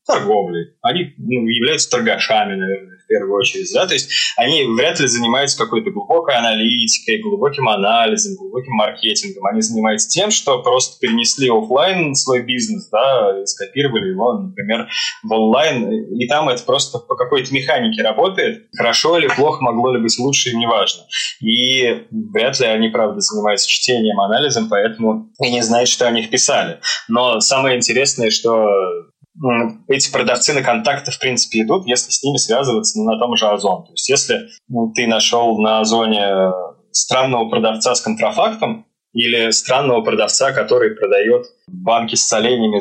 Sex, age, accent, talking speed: male, 20-39, native, 150 wpm